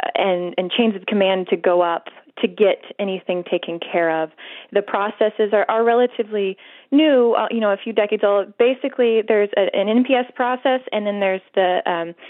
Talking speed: 180 wpm